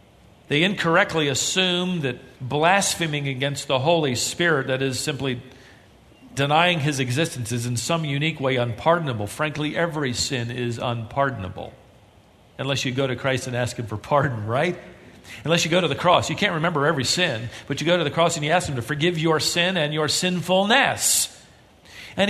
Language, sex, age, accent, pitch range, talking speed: English, male, 50-69, American, 130-210 Hz, 180 wpm